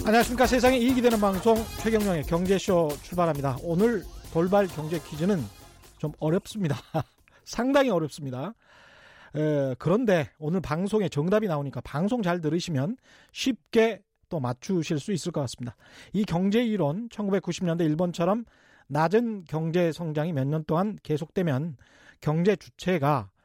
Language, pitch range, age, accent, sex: Korean, 150-215 Hz, 40-59, native, male